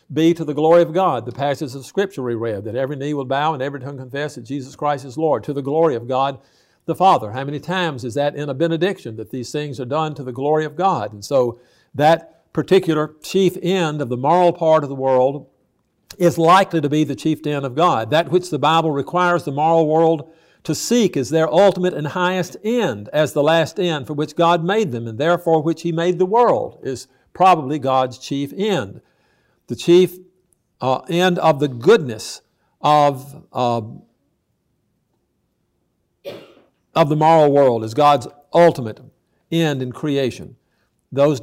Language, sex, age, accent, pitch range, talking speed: English, male, 60-79, American, 135-175 Hz, 185 wpm